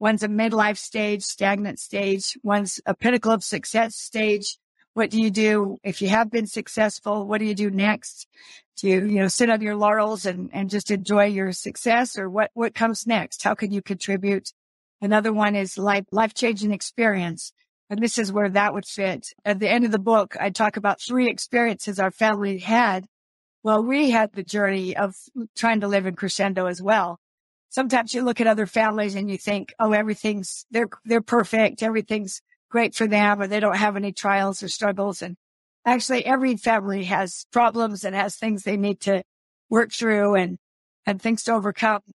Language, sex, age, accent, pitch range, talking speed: English, female, 50-69, American, 195-225 Hz, 190 wpm